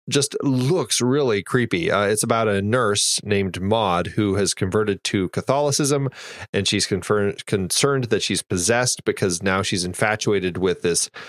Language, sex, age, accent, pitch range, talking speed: English, male, 30-49, American, 95-120 Hz, 155 wpm